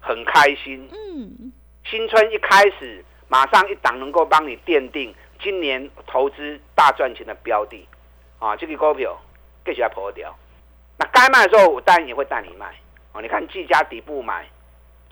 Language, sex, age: Chinese, male, 50-69